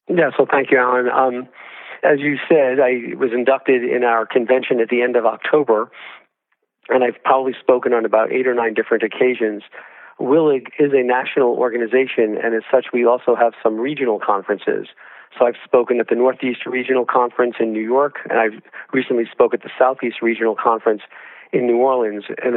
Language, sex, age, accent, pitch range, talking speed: English, male, 50-69, American, 115-130 Hz, 185 wpm